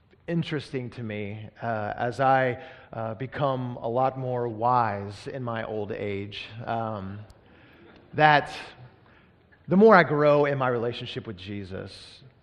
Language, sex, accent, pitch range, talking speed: English, male, American, 110-140 Hz, 130 wpm